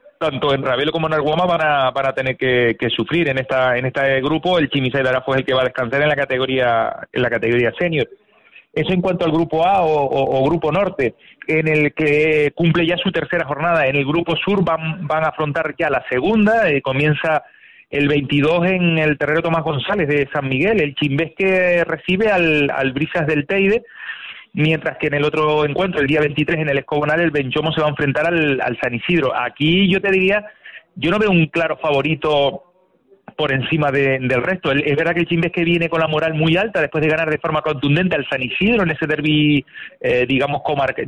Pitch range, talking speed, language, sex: 145-175 Hz, 220 wpm, Spanish, male